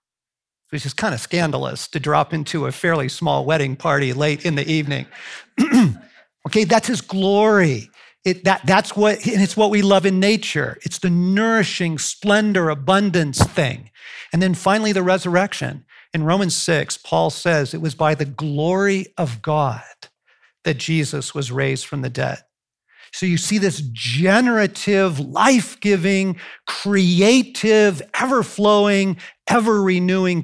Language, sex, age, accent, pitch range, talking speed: English, male, 50-69, American, 145-195 Hz, 150 wpm